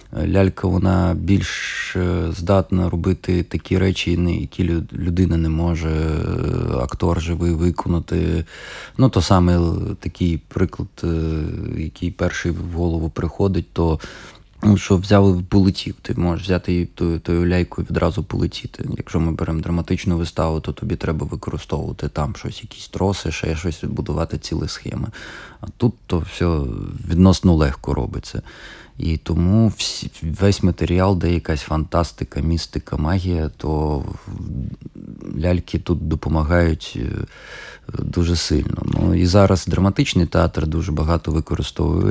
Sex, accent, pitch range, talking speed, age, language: male, native, 80-95 Hz, 125 wpm, 20-39, Ukrainian